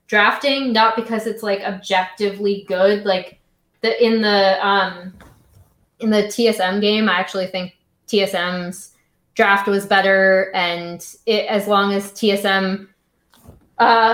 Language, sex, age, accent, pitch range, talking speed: English, female, 20-39, American, 185-230 Hz, 125 wpm